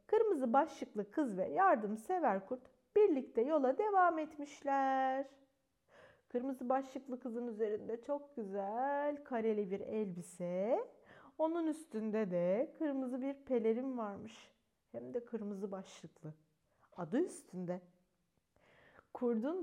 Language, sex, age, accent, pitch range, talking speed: Turkish, female, 40-59, native, 215-310 Hz, 100 wpm